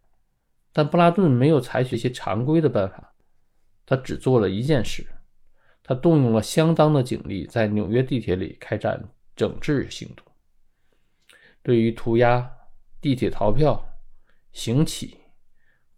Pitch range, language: 110-145 Hz, Chinese